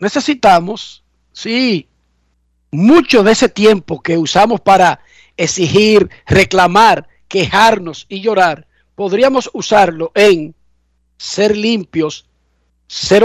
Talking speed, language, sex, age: 90 wpm, Spanish, male, 50-69